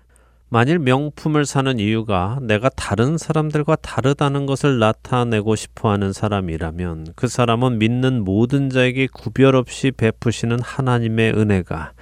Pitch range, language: 100-135 Hz, Korean